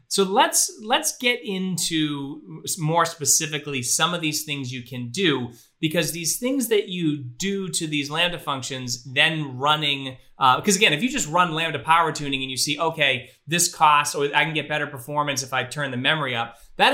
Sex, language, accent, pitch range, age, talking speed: male, English, American, 135-180 Hz, 30-49, 195 wpm